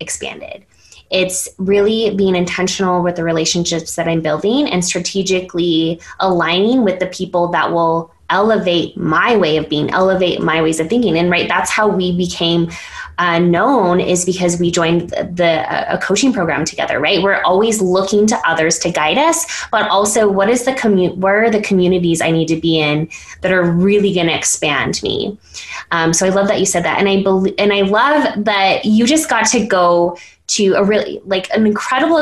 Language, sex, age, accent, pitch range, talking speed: English, female, 20-39, American, 180-225 Hz, 195 wpm